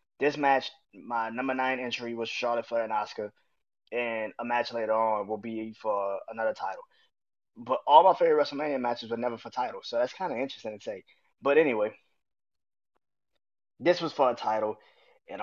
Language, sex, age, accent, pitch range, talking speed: English, male, 20-39, American, 115-145 Hz, 180 wpm